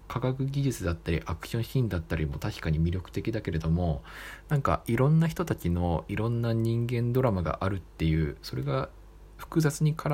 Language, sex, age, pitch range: Japanese, male, 20-39, 80-115 Hz